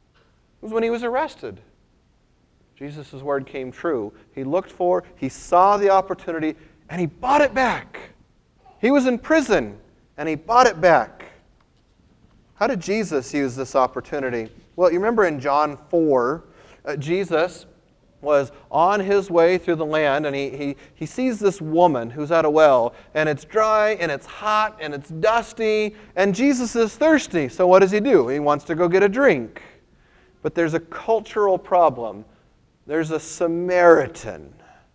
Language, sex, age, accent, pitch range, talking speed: English, male, 30-49, American, 120-180 Hz, 160 wpm